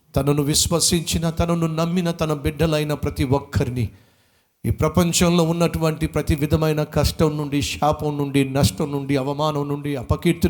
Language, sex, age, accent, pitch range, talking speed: Telugu, male, 50-69, native, 135-185 Hz, 125 wpm